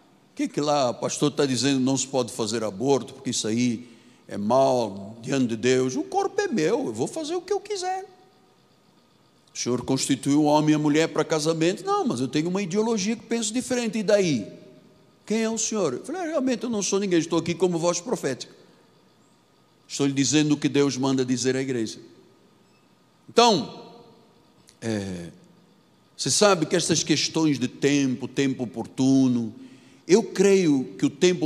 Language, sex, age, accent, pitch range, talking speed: Portuguese, male, 60-79, Brazilian, 135-210 Hz, 180 wpm